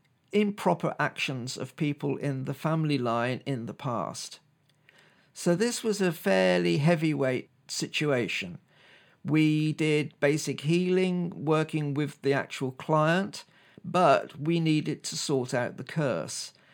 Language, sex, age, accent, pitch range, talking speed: English, male, 50-69, British, 130-155 Hz, 125 wpm